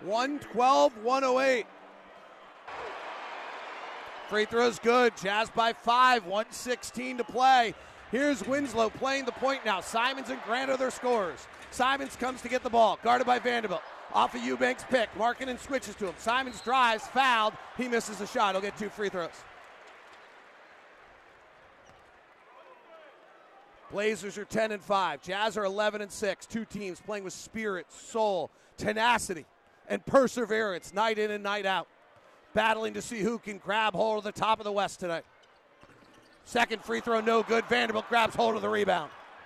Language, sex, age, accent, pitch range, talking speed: English, male, 40-59, American, 215-255 Hz, 155 wpm